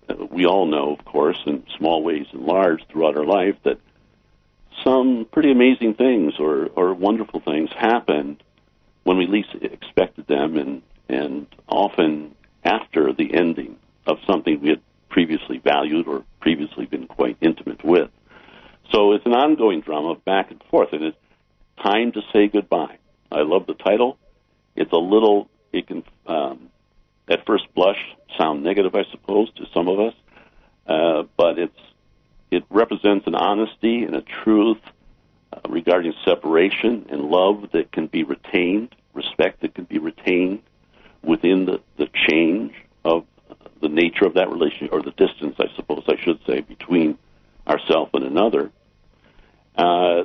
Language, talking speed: English, 155 wpm